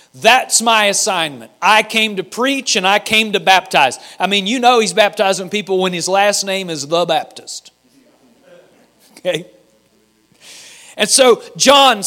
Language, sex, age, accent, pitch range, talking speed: English, male, 40-59, American, 195-245 Hz, 150 wpm